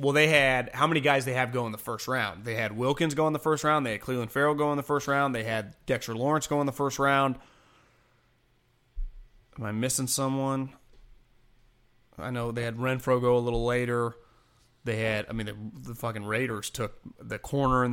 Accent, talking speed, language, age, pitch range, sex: American, 220 wpm, English, 30-49, 120-180 Hz, male